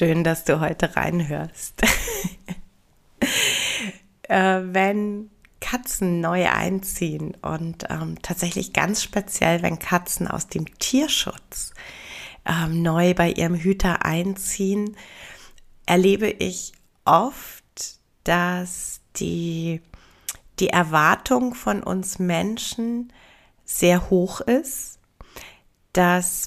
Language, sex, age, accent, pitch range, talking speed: German, female, 30-49, German, 165-205 Hz, 90 wpm